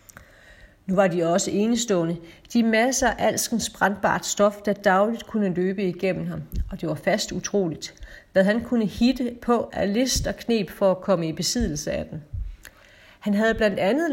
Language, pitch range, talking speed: Danish, 185-230 Hz, 175 wpm